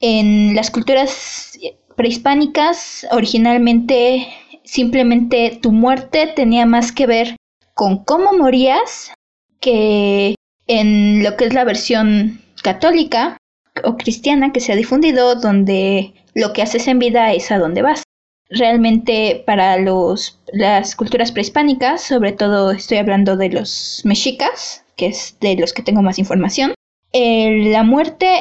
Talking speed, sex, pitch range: 130 wpm, female, 210-260 Hz